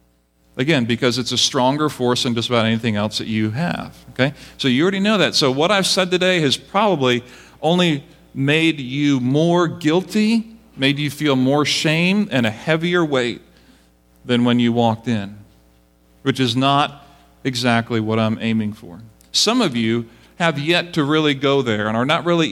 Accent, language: American, English